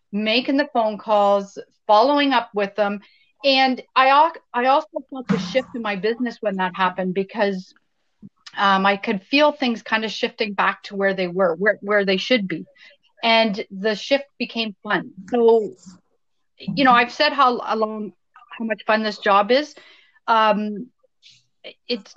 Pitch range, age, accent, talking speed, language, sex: 205-275 Hz, 40-59, American, 165 wpm, English, female